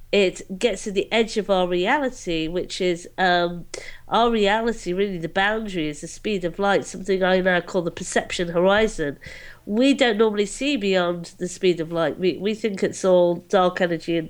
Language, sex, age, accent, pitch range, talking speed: English, female, 50-69, British, 175-205 Hz, 190 wpm